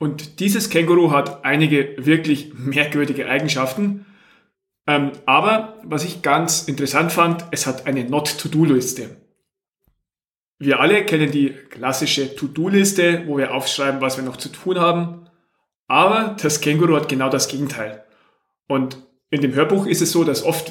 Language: German